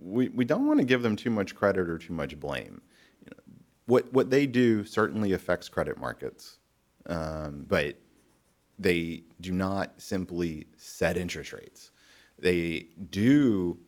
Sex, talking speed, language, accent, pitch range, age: male, 150 wpm, English, American, 80-100 Hz, 40-59